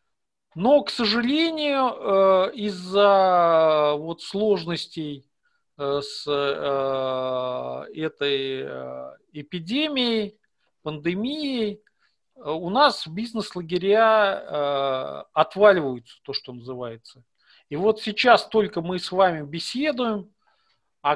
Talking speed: 70 wpm